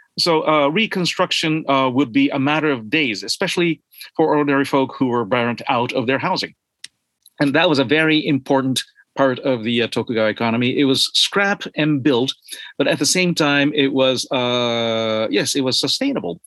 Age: 40-59